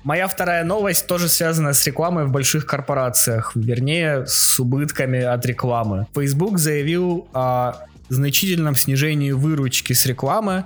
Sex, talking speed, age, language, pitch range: male, 130 wpm, 20-39, Russian, 125-160 Hz